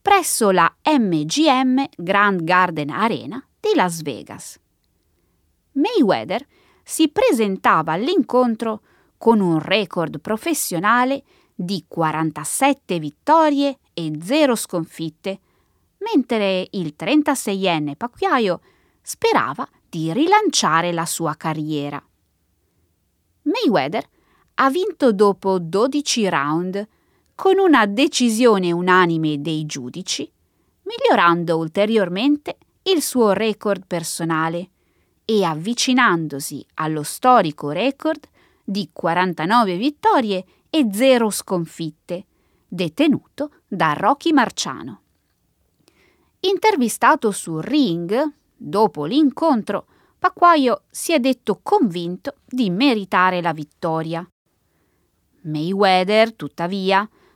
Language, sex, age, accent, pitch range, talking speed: Italian, female, 20-39, native, 165-275 Hz, 85 wpm